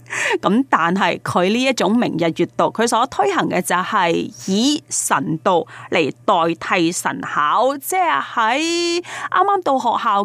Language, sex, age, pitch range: Chinese, female, 30-49, 185-295 Hz